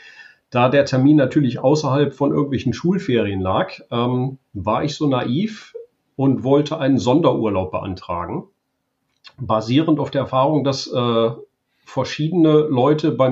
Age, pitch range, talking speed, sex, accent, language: 40-59, 110-145 Hz, 125 wpm, male, German, German